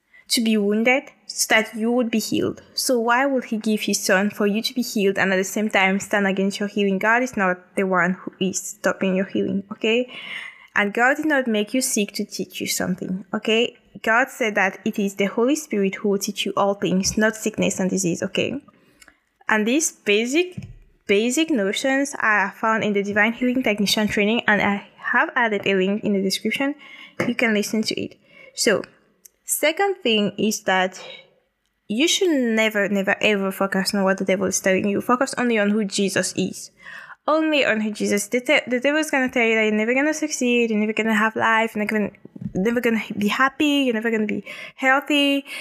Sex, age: female, 10-29